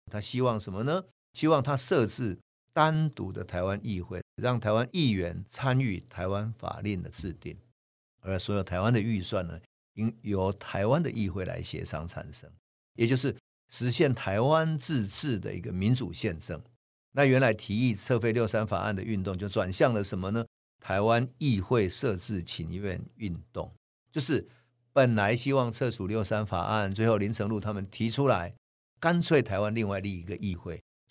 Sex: male